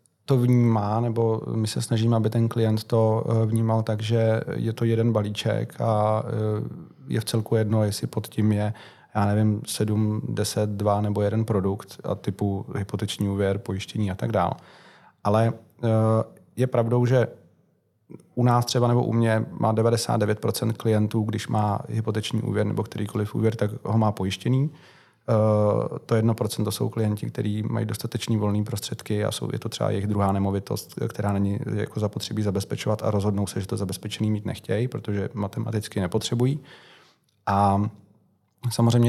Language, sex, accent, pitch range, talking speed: Czech, male, native, 105-115 Hz, 150 wpm